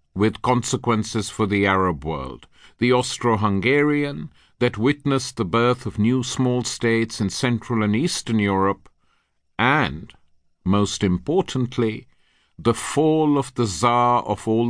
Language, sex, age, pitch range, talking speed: English, male, 50-69, 95-130 Hz, 125 wpm